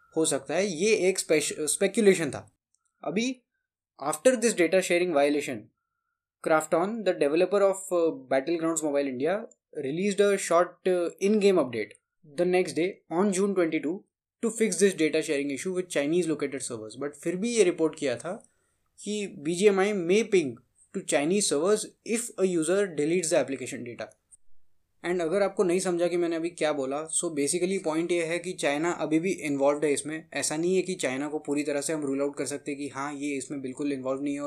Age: 20-39